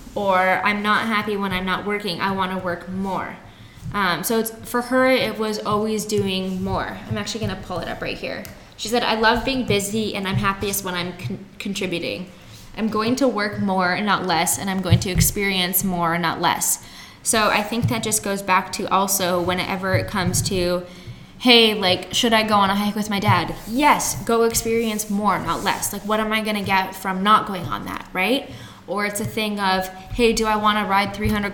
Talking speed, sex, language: 215 wpm, female, English